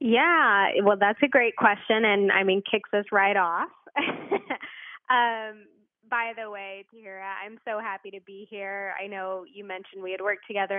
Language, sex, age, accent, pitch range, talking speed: English, female, 20-39, American, 195-255 Hz, 180 wpm